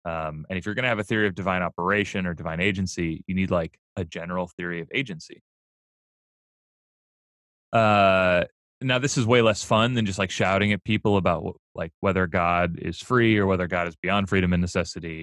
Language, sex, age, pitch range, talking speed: English, male, 30-49, 85-110 Hz, 195 wpm